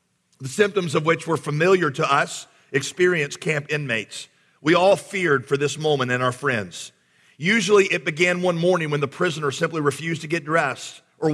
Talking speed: 180 wpm